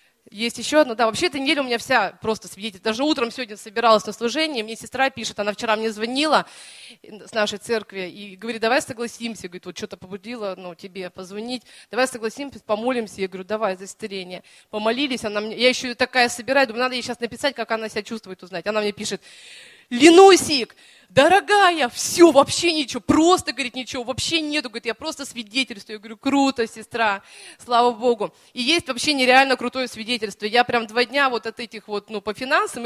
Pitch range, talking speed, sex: 215-265 Hz, 190 wpm, female